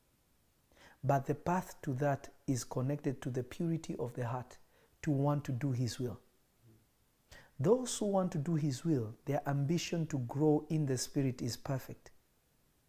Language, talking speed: English, 165 wpm